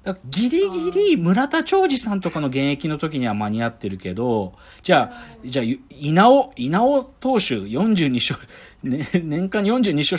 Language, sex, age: Japanese, male, 40-59